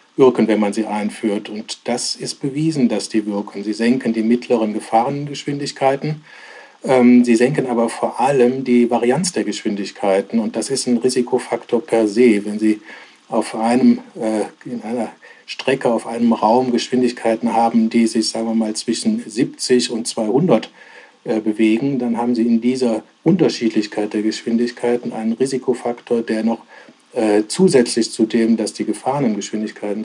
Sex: male